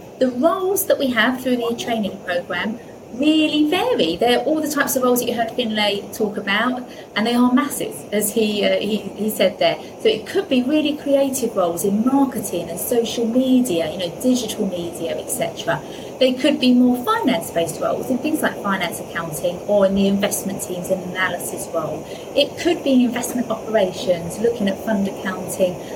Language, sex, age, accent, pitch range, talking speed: English, female, 30-49, British, 200-255 Hz, 185 wpm